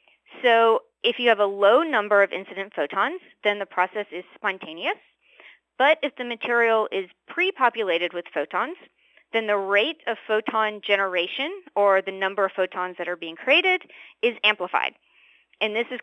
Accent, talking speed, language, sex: American, 160 wpm, English, female